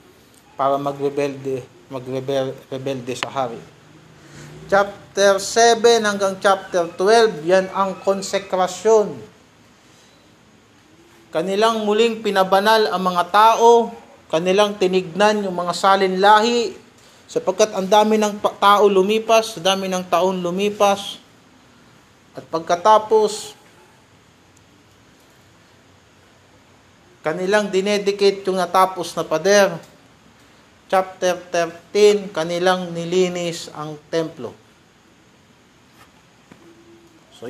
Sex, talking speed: male, 80 wpm